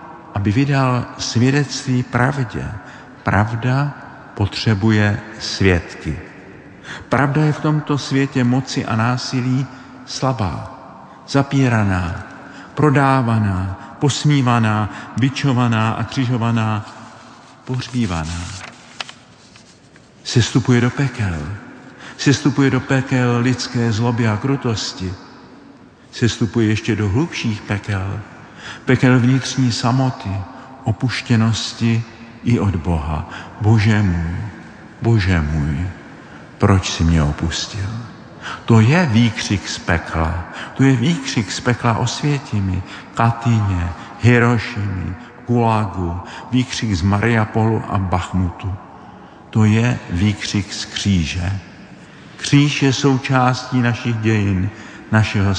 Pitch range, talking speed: 100-130 Hz, 90 wpm